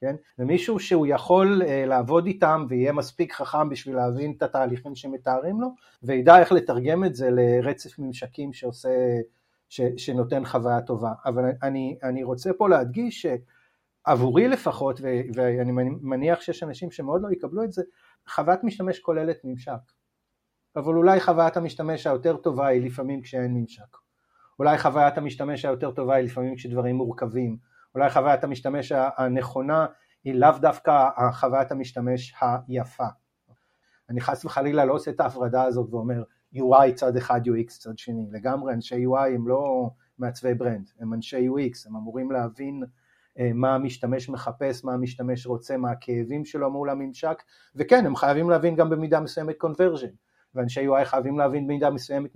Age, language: 40-59, Hebrew